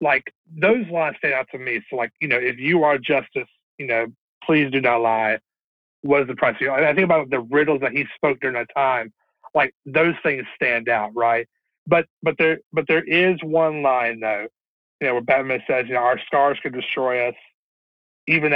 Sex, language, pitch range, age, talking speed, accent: male, English, 120-155 Hz, 40-59, 215 wpm, American